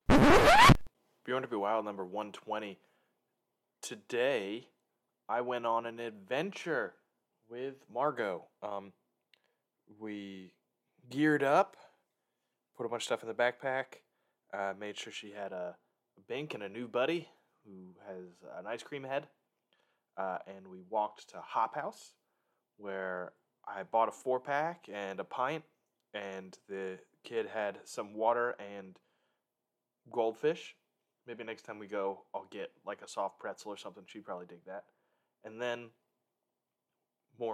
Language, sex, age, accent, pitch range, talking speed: English, male, 20-39, American, 100-140 Hz, 140 wpm